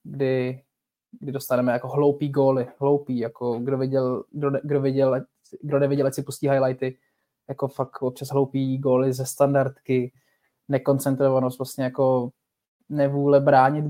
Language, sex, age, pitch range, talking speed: Czech, male, 20-39, 125-140 Hz, 145 wpm